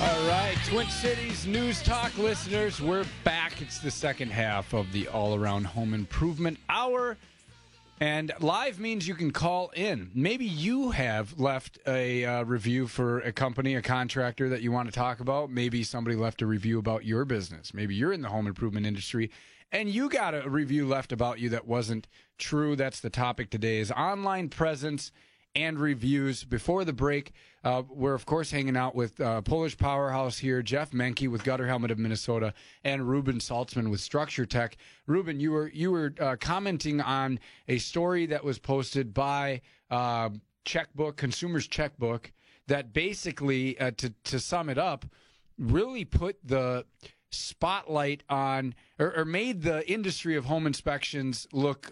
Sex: male